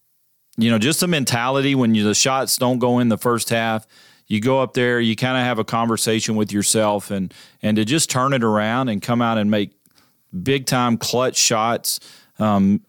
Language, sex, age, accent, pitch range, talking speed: English, male, 40-59, American, 105-125 Hz, 200 wpm